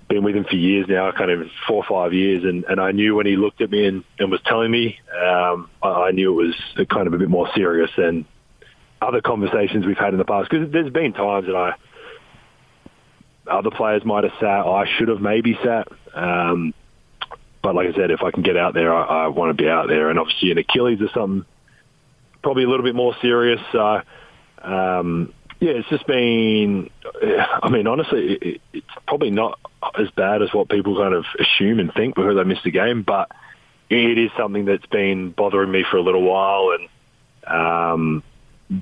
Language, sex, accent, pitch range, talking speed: English, male, Australian, 90-115 Hz, 205 wpm